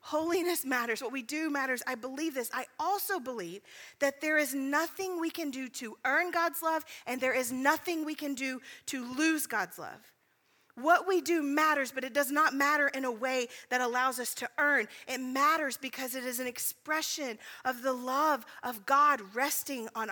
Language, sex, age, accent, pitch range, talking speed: English, female, 40-59, American, 255-310 Hz, 195 wpm